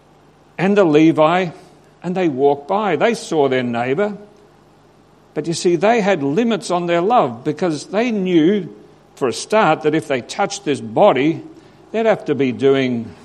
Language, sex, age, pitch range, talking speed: English, male, 60-79, 145-205 Hz, 170 wpm